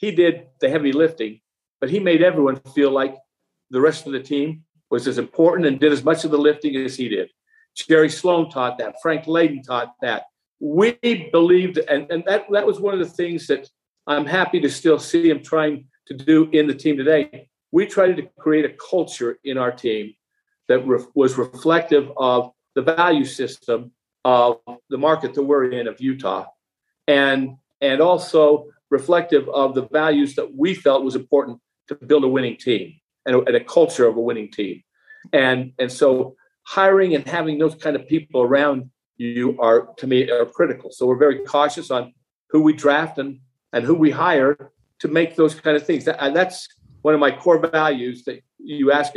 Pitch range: 130-165 Hz